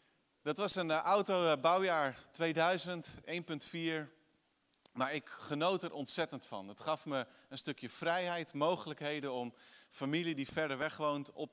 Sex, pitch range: male, 135-165 Hz